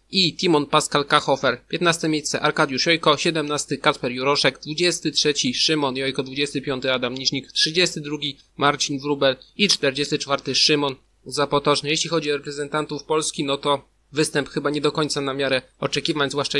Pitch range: 145-165 Hz